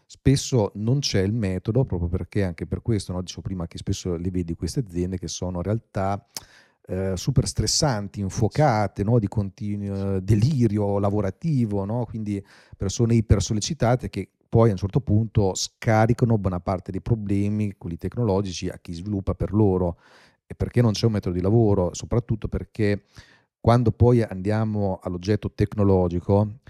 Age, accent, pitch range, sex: 40-59, native, 95-110 Hz, male